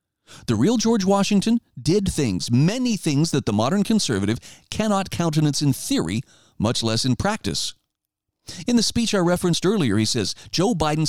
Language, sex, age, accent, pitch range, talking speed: English, male, 40-59, American, 120-170 Hz, 160 wpm